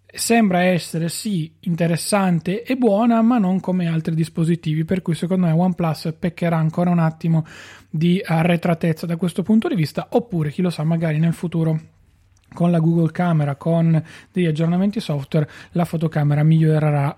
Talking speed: 155 wpm